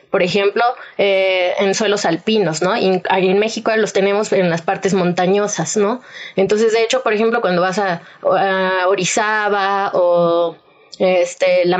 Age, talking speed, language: 20-39, 145 wpm, Spanish